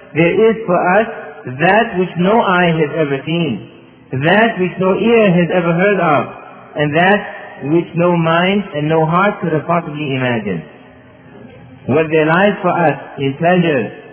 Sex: male